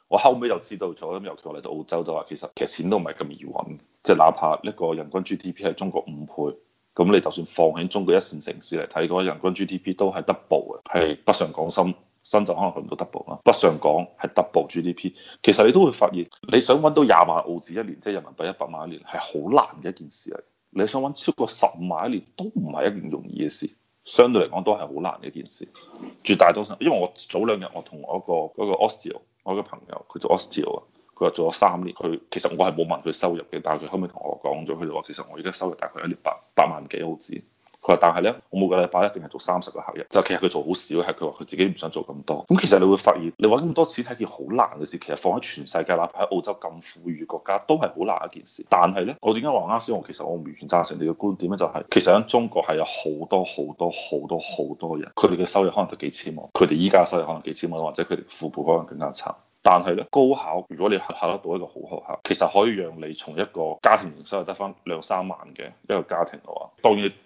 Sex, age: male, 30-49